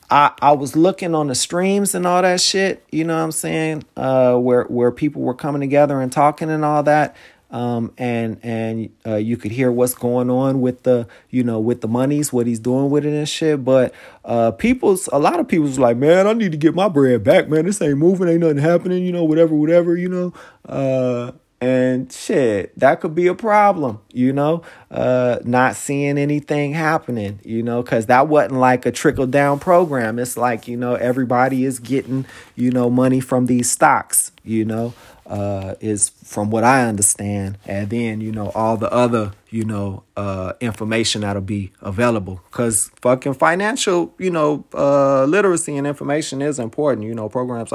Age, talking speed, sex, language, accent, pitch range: 30-49, 195 wpm, male, English, American, 115-150 Hz